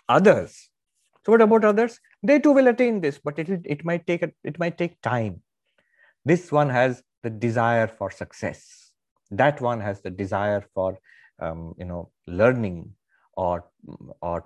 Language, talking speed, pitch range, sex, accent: English, 165 wpm, 100-160 Hz, male, Indian